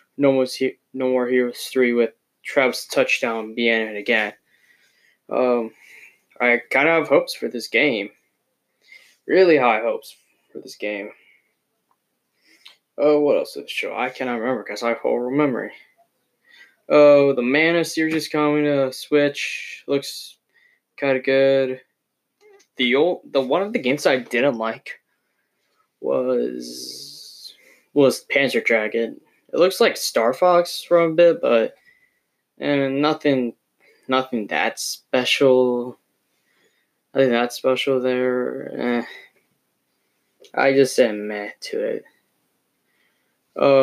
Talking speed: 130 wpm